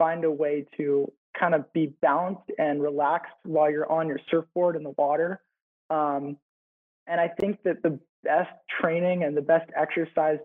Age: 20-39